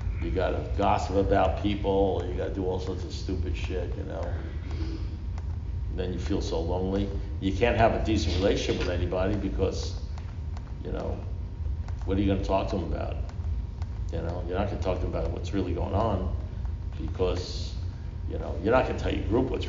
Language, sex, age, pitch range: English, male, 60-79, 85-100 Hz